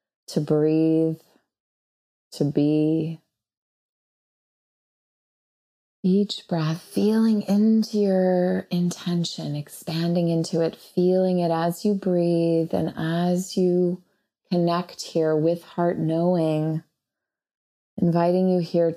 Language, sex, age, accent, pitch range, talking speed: English, female, 20-39, American, 160-180 Hz, 90 wpm